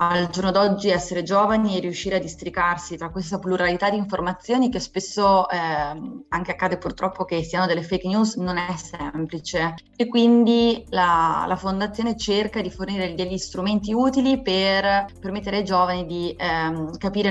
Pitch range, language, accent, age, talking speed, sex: 165-190 Hz, Italian, native, 20-39, 160 wpm, female